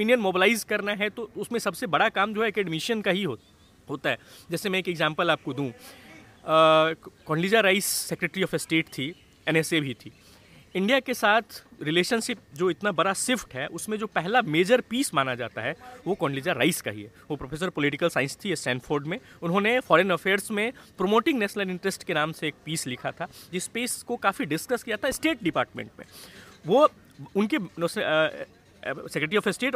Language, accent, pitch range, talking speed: Hindi, native, 155-220 Hz, 185 wpm